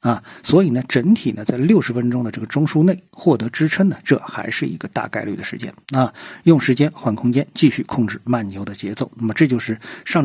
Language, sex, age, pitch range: Chinese, male, 50-69, 110-150 Hz